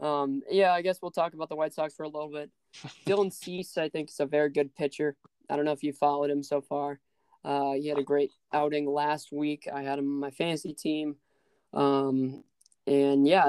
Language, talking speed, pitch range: English, 225 wpm, 140-165 Hz